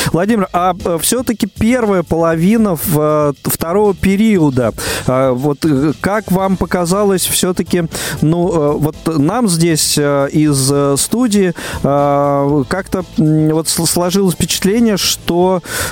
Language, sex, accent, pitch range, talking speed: Russian, male, native, 145-185 Hz, 85 wpm